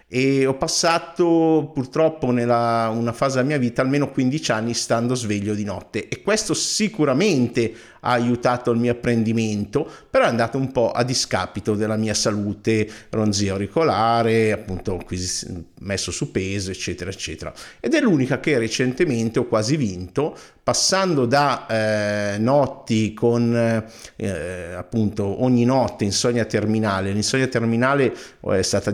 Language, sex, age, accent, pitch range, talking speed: Italian, male, 50-69, native, 105-130 Hz, 135 wpm